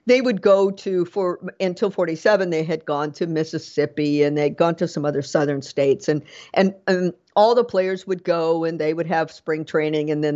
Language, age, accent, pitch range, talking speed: English, 50-69, American, 150-200 Hz, 210 wpm